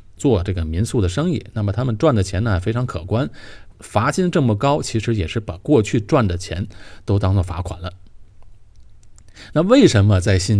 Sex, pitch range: male, 95-115 Hz